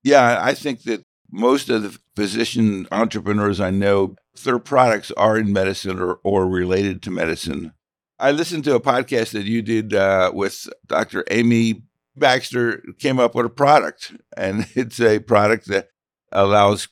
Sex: male